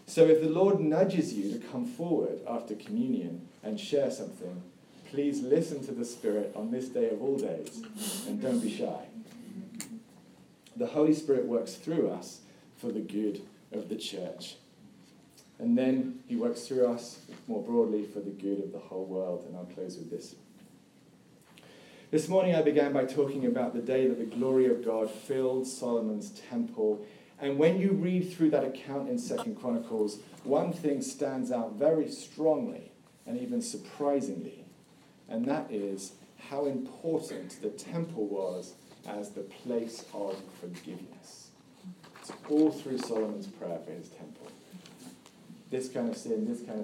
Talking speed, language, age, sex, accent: 160 wpm, English, 40-59, male, British